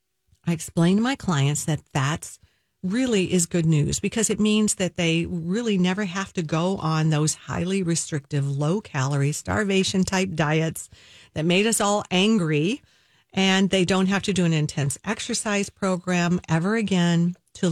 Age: 50-69